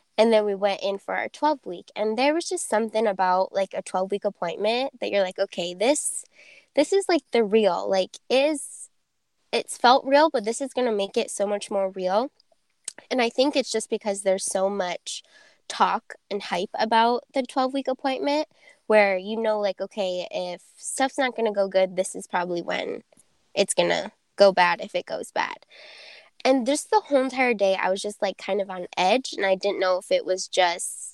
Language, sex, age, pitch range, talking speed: English, female, 10-29, 190-255 Hz, 210 wpm